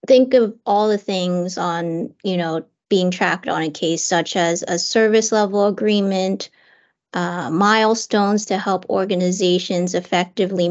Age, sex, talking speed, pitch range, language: 30-49, female, 140 wpm, 185-220 Hz, English